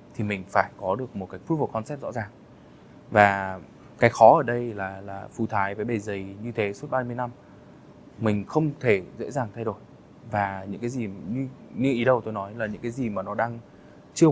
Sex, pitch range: male, 100-120 Hz